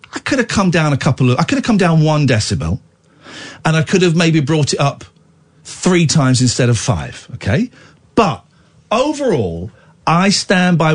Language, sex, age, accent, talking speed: English, male, 40-59, British, 185 wpm